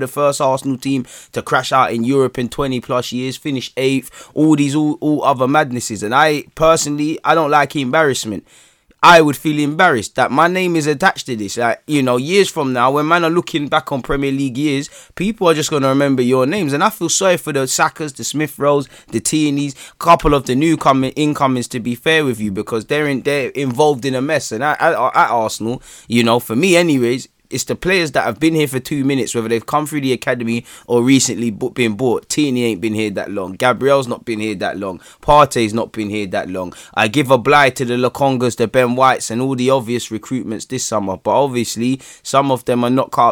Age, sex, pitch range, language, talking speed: 20-39, male, 120-150 Hz, English, 230 wpm